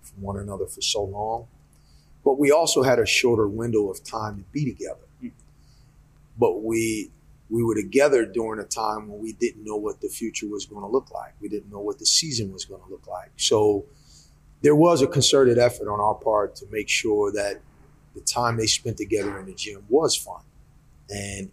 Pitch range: 105-130 Hz